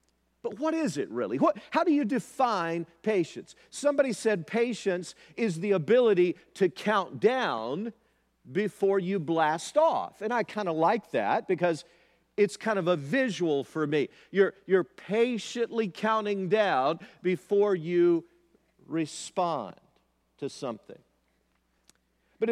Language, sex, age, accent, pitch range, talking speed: English, male, 50-69, American, 150-220 Hz, 130 wpm